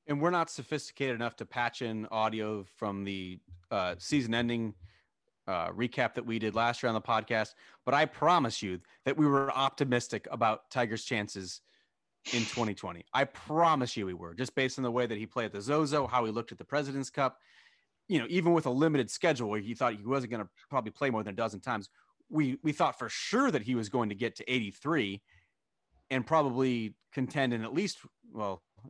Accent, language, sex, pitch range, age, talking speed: American, English, male, 110-140 Hz, 30-49, 210 wpm